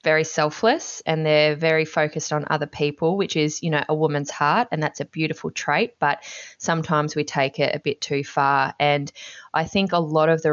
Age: 20-39